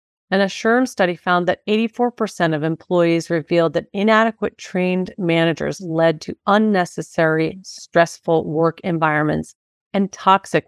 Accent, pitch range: American, 165-200 Hz